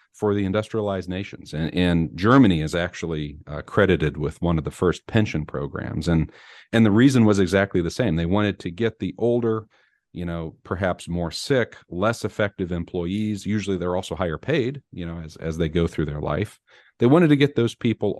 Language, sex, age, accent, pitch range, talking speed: English, male, 40-59, American, 85-105 Hz, 200 wpm